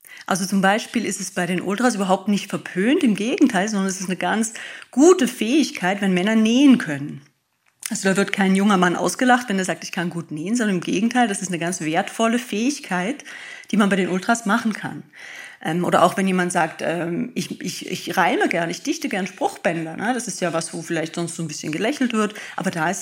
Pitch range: 185-245 Hz